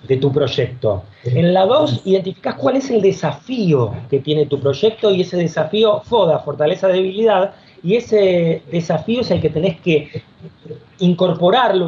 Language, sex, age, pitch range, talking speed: Spanish, male, 40-59, 150-205 Hz, 150 wpm